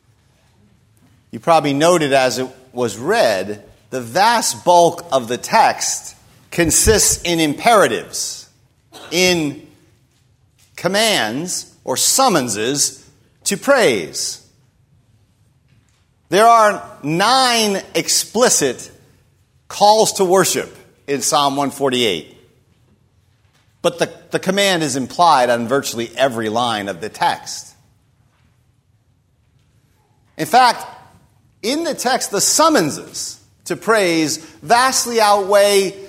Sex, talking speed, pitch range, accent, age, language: male, 95 wpm, 120-195 Hz, American, 40-59, English